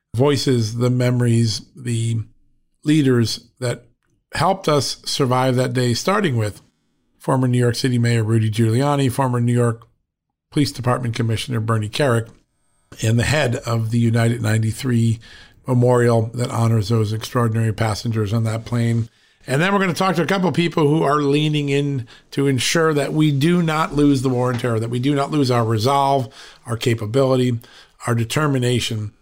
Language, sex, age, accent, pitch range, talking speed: English, male, 50-69, American, 115-140 Hz, 165 wpm